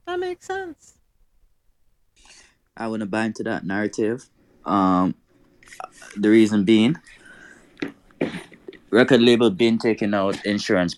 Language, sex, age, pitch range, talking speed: English, male, 20-39, 90-110 Hz, 110 wpm